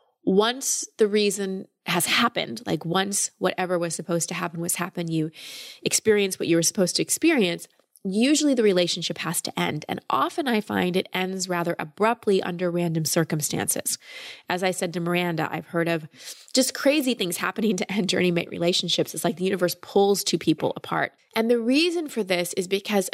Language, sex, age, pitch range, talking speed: English, female, 20-39, 175-215 Hz, 180 wpm